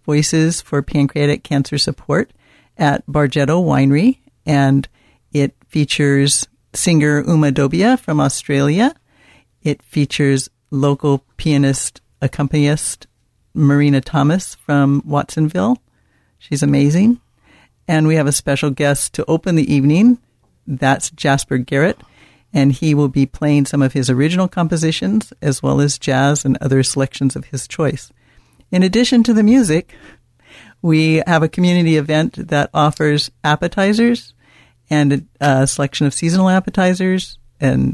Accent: American